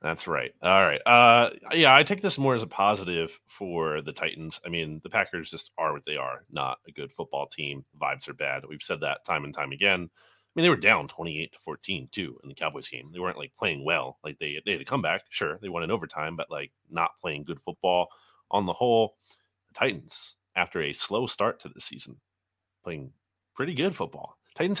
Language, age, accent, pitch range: English, 30-49, American, 85-120 Hz